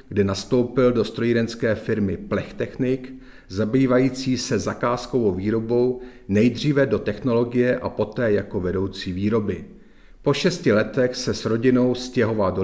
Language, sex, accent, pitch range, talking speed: Czech, male, native, 100-125 Hz, 125 wpm